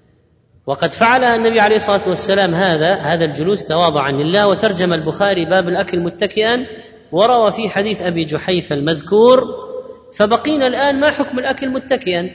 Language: Arabic